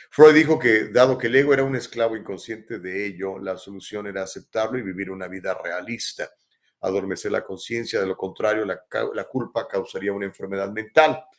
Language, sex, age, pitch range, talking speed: Spanish, male, 40-59, 100-125 Hz, 185 wpm